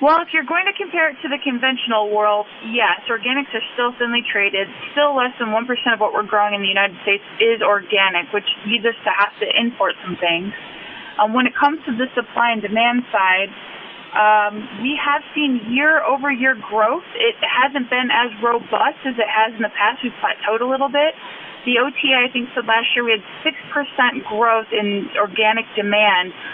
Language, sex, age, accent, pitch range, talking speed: English, female, 30-49, American, 210-255 Hz, 195 wpm